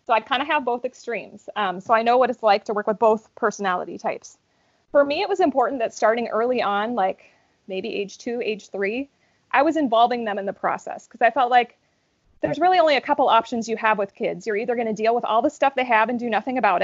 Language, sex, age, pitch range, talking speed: English, female, 30-49, 205-245 Hz, 255 wpm